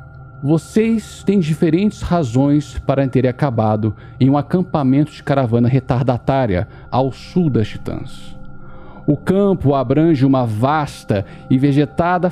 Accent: Brazilian